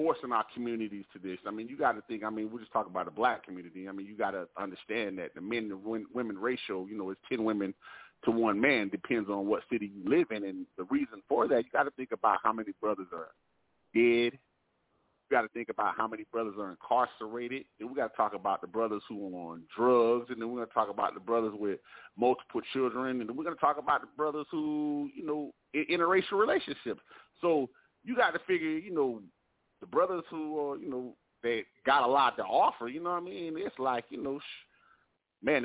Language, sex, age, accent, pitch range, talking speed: English, male, 30-49, American, 100-140 Hz, 235 wpm